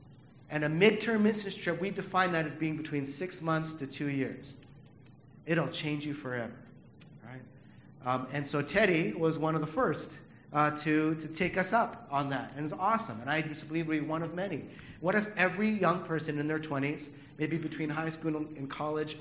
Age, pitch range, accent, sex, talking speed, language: 40-59, 135-160 Hz, American, male, 205 wpm, English